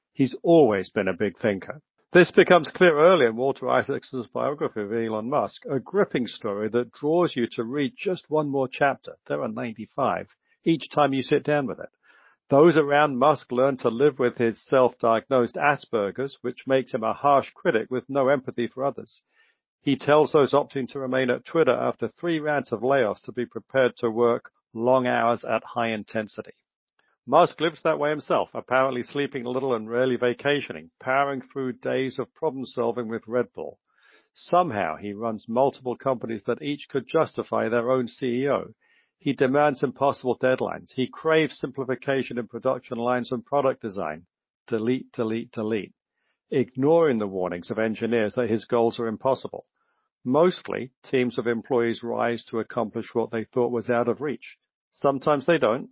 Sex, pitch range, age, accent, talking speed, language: male, 115-140 Hz, 60-79, British, 170 wpm, English